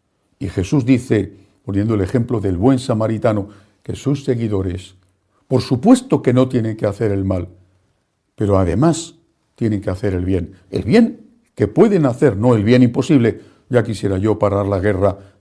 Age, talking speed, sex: 60-79, 170 wpm, male